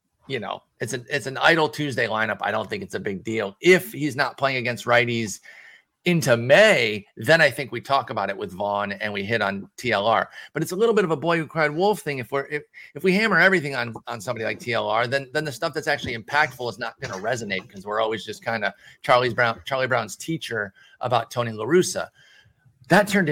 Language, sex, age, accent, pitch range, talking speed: English, male, 30-49, American, 115-150 Hz, 230 wpm